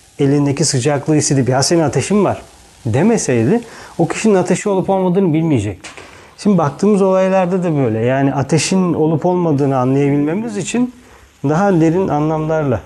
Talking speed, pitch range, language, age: 130 wpm, 120-165 Hz, Turkish, 40-59